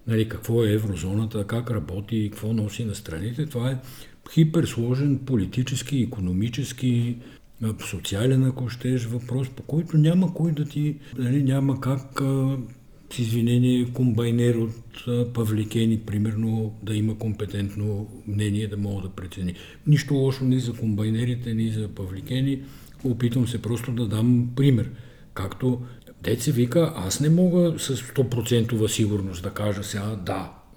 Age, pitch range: 60-79, 105-130 Hz